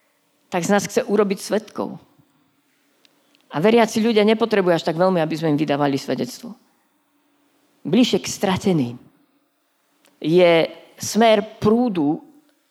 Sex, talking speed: female, 115 wpm